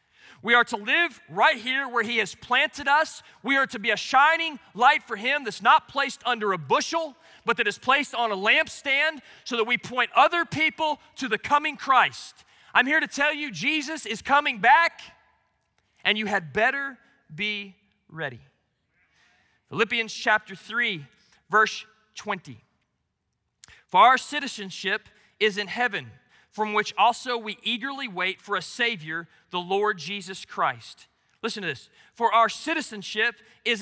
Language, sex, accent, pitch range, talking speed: English, male, American, 215-290 Hz, 160 wpm